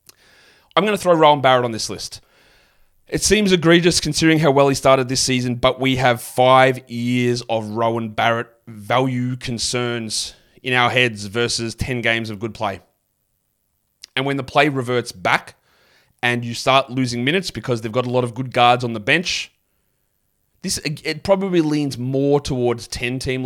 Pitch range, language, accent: 115-145 Hz, English, Australian